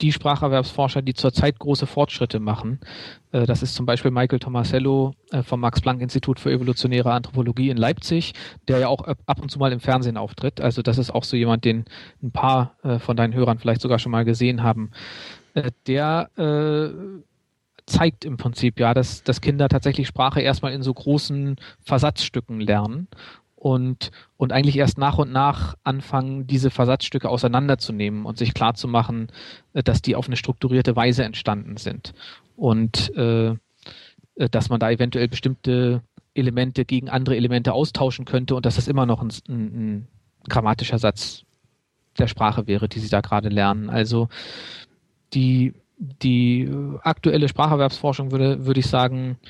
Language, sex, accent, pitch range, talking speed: German, male, German, 115-135 Hz, 155 wpm